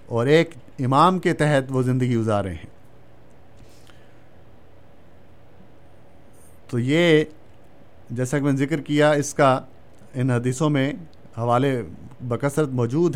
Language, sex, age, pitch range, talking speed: Urdu, male, 50-69, 120-155 Hz, 110 wpm